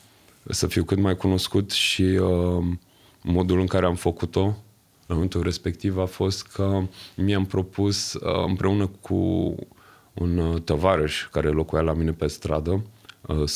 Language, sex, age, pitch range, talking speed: Romanian, male, 30-49, 85-100 Hz, 145 wpm